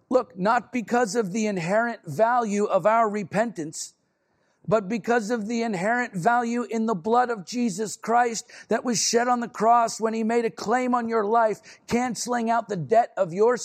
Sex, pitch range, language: male, 195-235 Hz, English